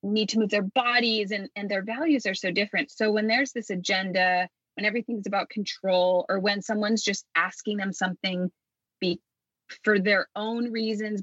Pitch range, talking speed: 185-240 Hz, 170 wpm